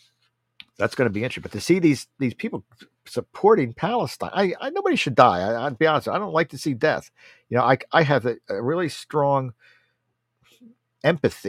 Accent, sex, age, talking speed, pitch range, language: American, male, 50-69, 200 wpm, 120-160 Hz, English